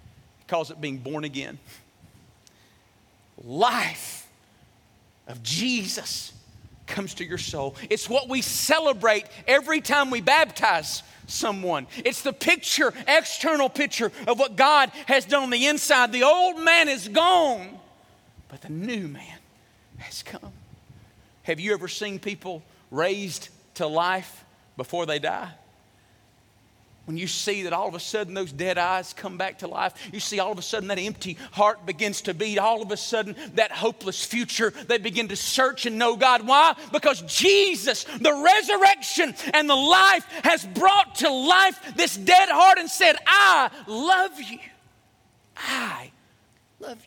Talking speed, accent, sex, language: 150 wpm, American, male, English